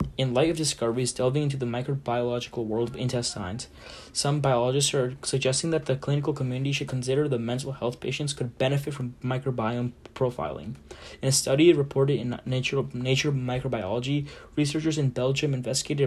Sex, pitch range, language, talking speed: male, 125-140 Hz, English, 155 wpm